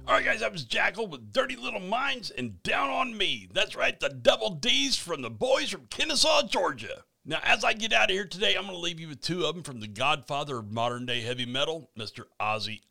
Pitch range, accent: 115-150 Hz, American